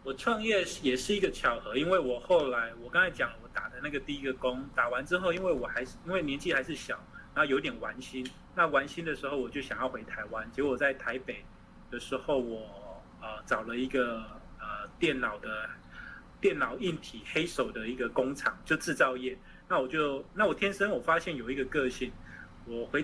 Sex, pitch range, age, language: male, 125-150 Hz, 20-39, Chinese